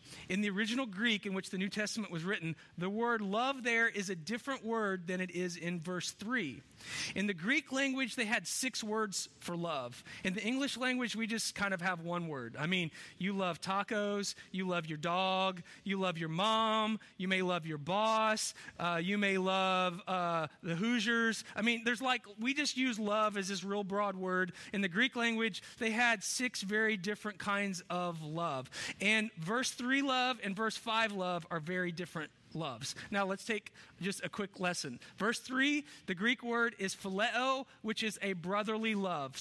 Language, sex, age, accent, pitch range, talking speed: English, male, 40-59, American, 185-235 Hz, 195 wpm